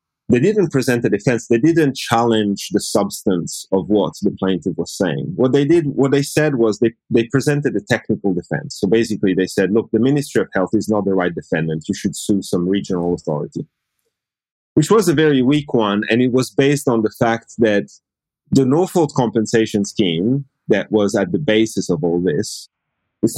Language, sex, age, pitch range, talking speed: English, male, 30-49, 100-135 Hz, 195 wpm